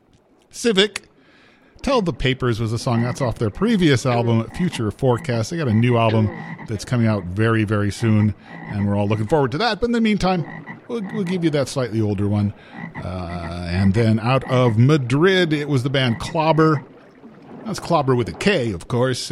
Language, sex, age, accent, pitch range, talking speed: English, male, 40-59, American, 115-165 Hz, 195 wpm